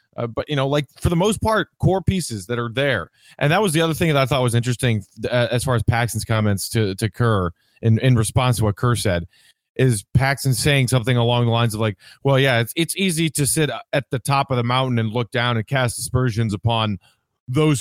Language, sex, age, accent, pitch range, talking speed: English, male, 30-49, American, 115-150 Hz, 245 wpm